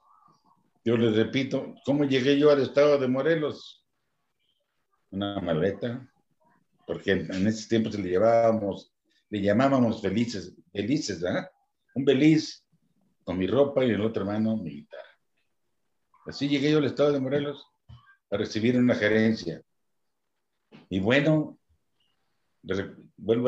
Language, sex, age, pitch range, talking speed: Spanish, male, 50-69, 105-130 Hz, 130 wpm